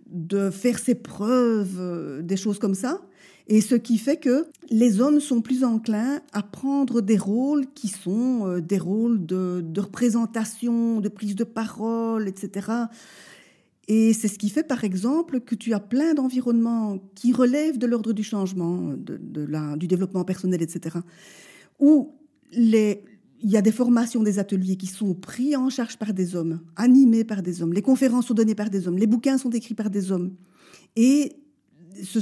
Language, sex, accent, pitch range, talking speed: French, female, French, 200-250 Hz, 180 wpm